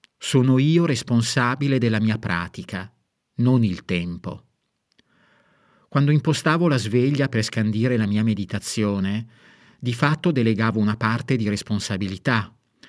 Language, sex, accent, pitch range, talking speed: Italian, male, native, 110-140 Hz, 115 wpm